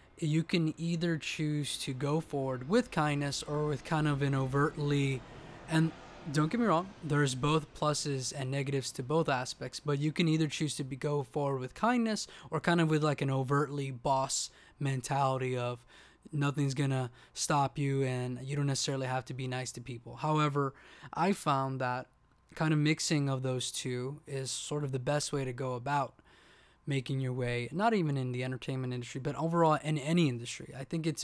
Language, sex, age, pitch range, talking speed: English, male, 20-39, 130-155 Hz, 190 wpm